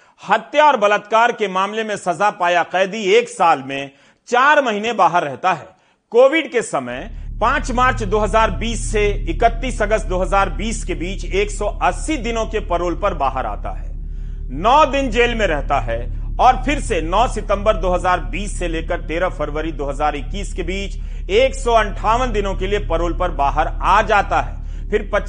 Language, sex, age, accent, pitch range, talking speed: Hindi, male, 40-59, native, 150-220 Hz, 160 wpm